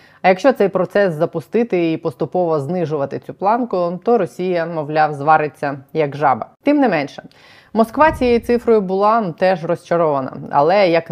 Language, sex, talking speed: Ukrainian, female, 145 wpm